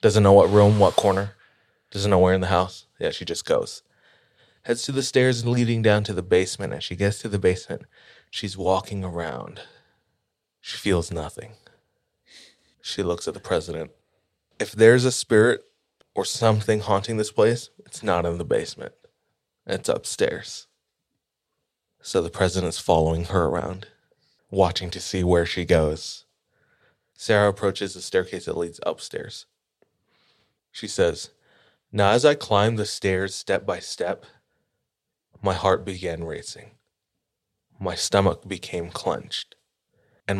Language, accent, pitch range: English, American, 90-115 Hz